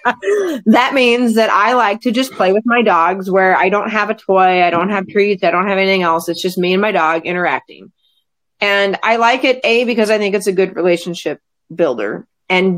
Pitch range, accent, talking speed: 170-215 Hz, American, 220 wpm